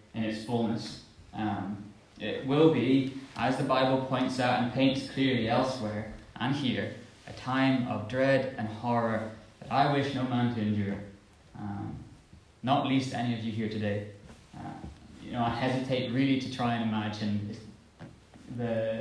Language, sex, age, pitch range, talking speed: English, male, 20-39, 110-140 Hz, 160 wpm